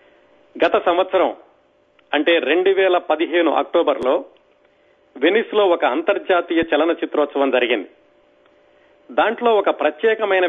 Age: 40-59